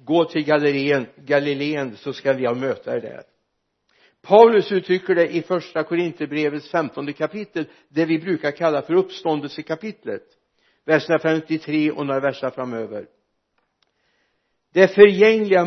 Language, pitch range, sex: Swedish, 140-185 Hz, male